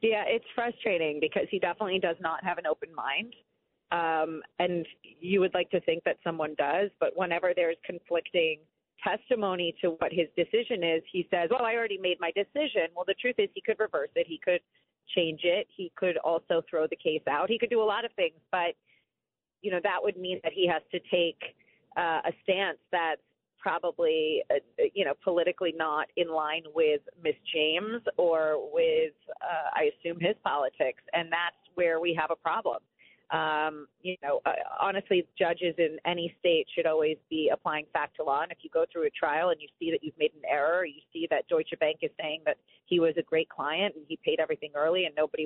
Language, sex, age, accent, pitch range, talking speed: English, female, 30-49, American, 165-245 Hz, 205 wpm